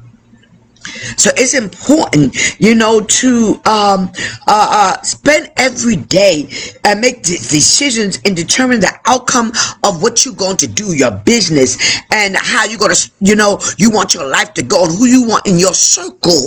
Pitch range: 145-235 Hz